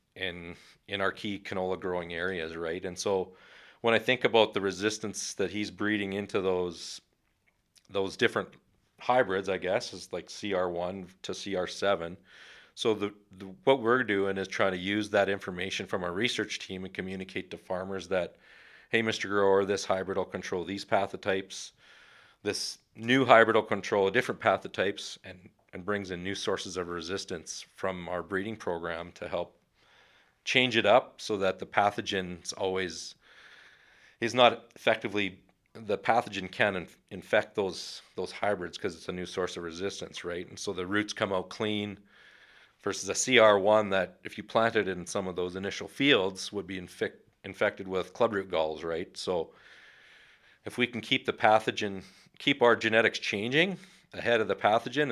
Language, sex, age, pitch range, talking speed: English, male, 40-59, 95-105 Hz, 170 wpm